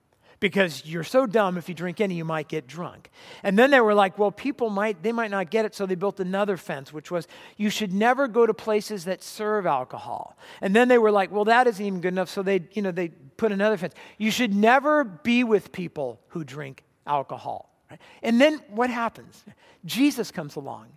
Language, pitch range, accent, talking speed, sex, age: English, 190-265 Hz, American, 215 wpm, male, 50-69